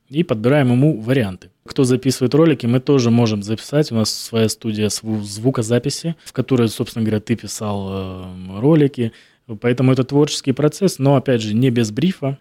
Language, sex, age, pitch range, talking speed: Russian, male, 20-39, 110-135 Hz, 160 wpm